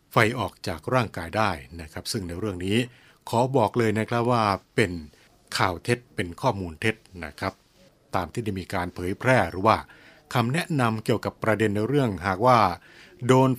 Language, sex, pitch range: Thai, male, 95-125 Hz